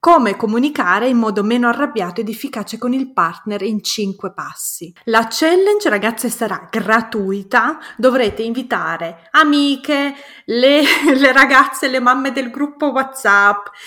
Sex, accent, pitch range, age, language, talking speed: female, native, 205-270 Hz, 20-39, Italian, 130 wpm